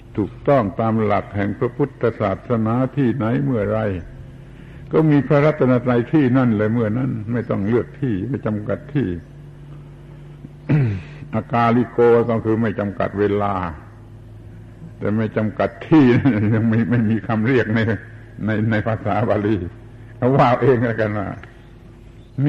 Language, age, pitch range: Thai, 70-89, 110-130 Hz